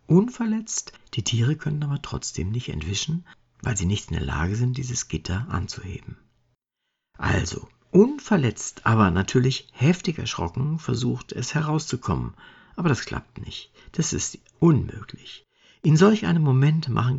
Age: 60-79